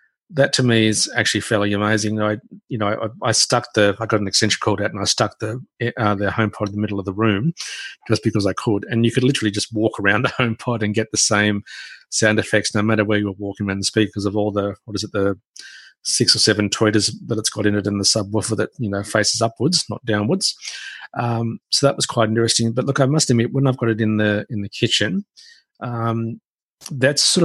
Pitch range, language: 105-115 Hz, English